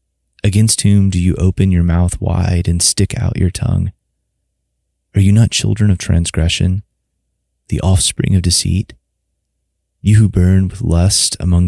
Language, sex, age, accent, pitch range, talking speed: English, male, 30-49, American, 85-100 Hz, 150 wpm